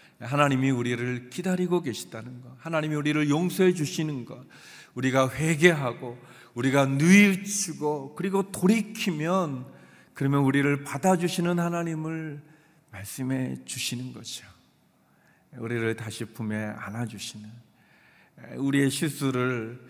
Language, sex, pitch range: Korean, male, 125-180 Hz